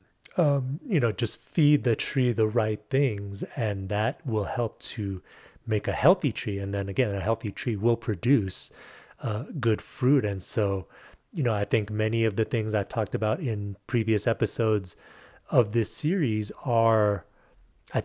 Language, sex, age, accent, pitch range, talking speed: English, male, 30-49, American, 105-130 Hz, 170 wpm